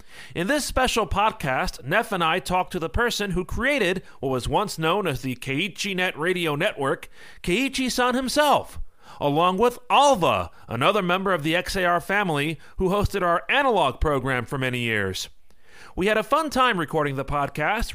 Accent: American